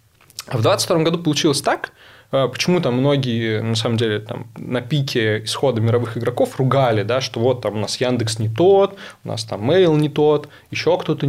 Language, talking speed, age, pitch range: Russian, 180 wpm, 20-39, 115-145 Hz